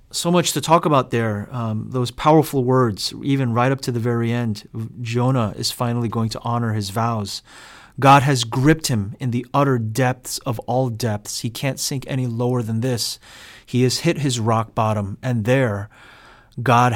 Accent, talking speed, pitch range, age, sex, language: American, 185 wpm, 115-150 Hz, 30-49, male, English